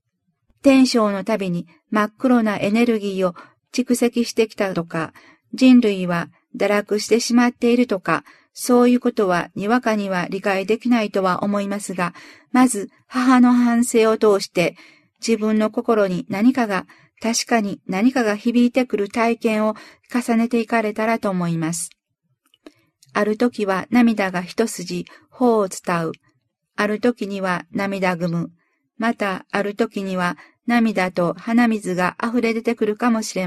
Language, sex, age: Japanese, female, 50-69